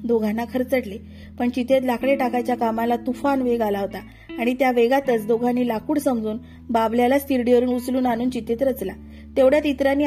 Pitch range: 225-275 Hz